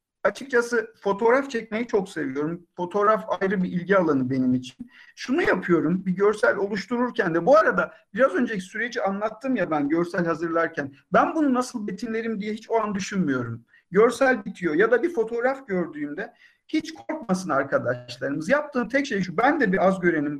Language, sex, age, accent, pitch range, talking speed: Turkish, male, 50-69, native, 180-255 Hz, 165 wpm